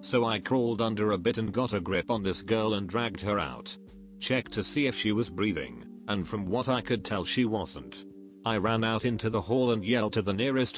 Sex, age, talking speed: male, 40-59, 240 wpm